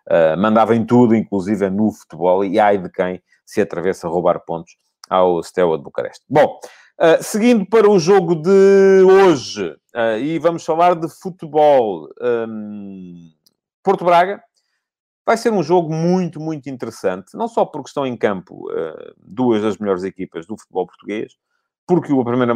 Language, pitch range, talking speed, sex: English, 105-160 Hz, 160 wpm, male